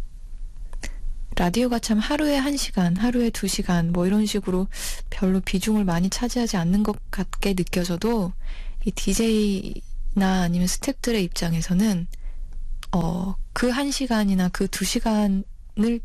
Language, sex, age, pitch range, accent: Korean, female, 20-39, 180-225 Hz, native